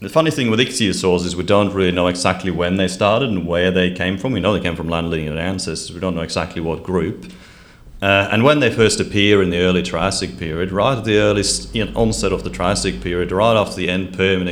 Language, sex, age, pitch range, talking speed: English, male, 30-49, 85-95 Hz, 250 wpm